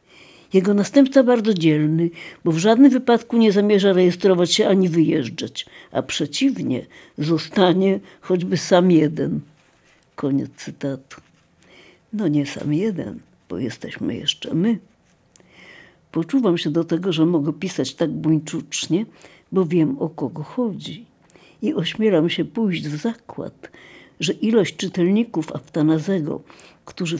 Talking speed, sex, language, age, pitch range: 120 wpm, female, Polish, 60-79, 155-190 Hz